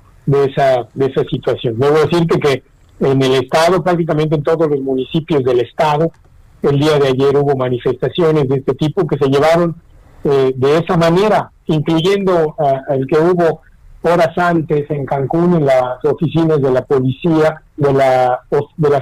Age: 50-69